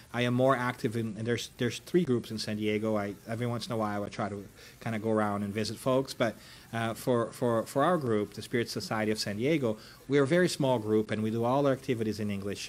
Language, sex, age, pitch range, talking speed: English, male, 30-49, 110-130 Hz, 260 wpm